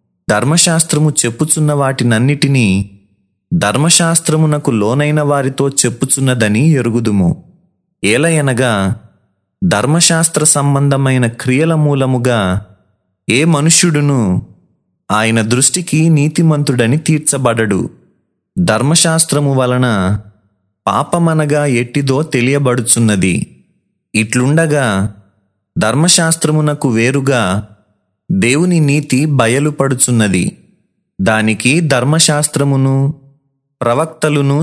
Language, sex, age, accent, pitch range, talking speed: Telugu, male, 30-49, native, 110-150 Hz, 55 wpm